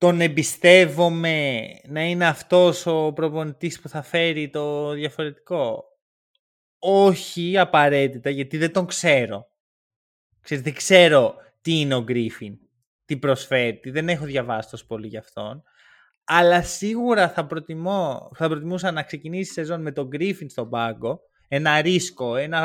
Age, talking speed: 20-39, 135 wpm